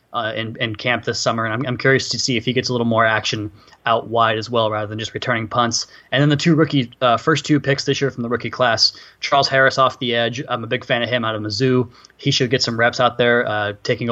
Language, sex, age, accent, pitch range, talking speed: English, male, 20-39, American, 115-130 Hz, 280 wpm